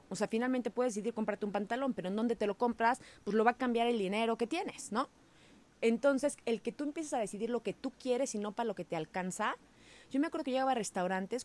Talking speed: 255 wpm